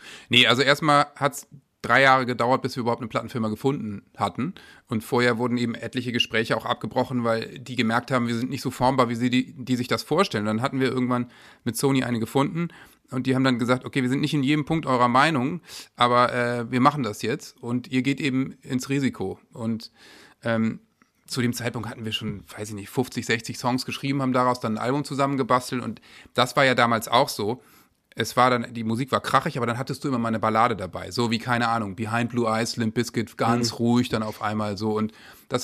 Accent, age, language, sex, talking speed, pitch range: German, 30-49, German, male, 230 wpm, 115-135 Hz